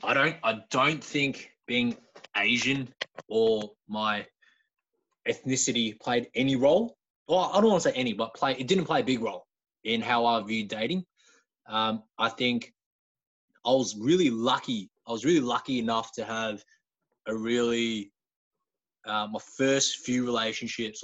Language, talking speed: English, 155 wpm